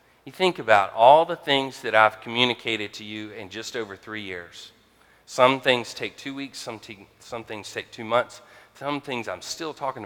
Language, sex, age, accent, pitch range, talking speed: English, male, 40-59, American, 105-130 Hz, 195 wpm